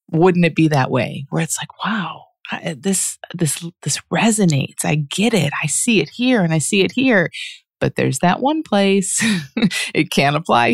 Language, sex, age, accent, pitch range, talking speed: English, female, 30-49, American, 155-215 Hz, 185 wpm